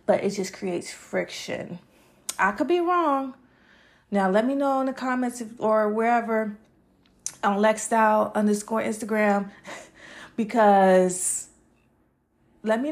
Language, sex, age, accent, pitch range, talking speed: English, female, 30-49, American, 200-245 Hz, 120 wpm